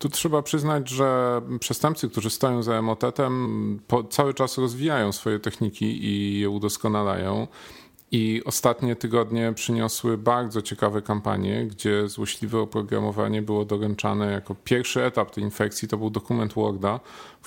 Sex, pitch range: male, 105-120 Hz